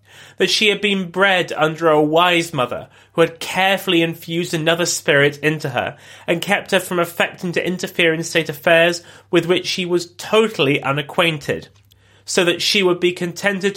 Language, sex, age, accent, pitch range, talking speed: English, male, 30-49, British, 130-175 Hz, 170 wpm